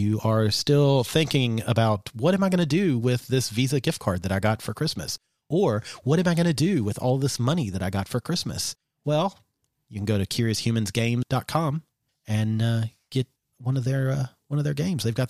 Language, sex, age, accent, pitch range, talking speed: English, male, 30-49, American, 105-140 Hz, 220 wpm